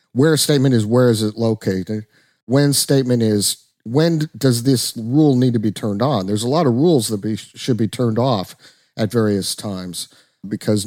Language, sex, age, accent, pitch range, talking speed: English, male, 50-69, American, 105-130 Hz, 190 wpm